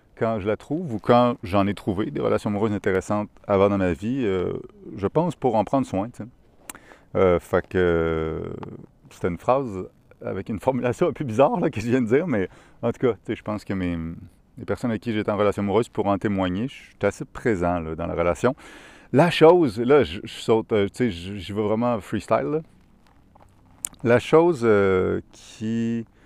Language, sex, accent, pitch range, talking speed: French, male, French, 100-125 Hz, 190 wpm